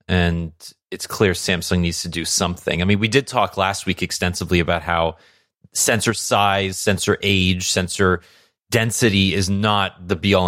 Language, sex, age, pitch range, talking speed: English, male, 30-49, 85-105 Hz, 160 wpm